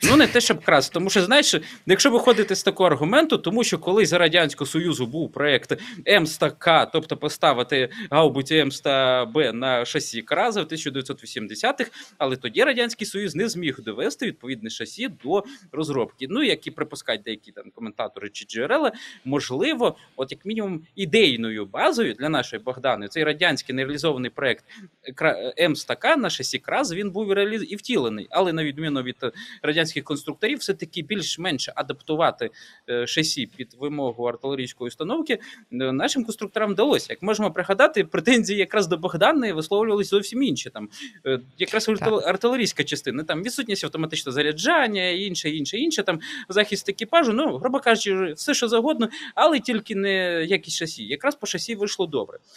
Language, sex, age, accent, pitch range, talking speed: Ukrainian, male, 20-39, native, 150-225 Hz, 150 wpm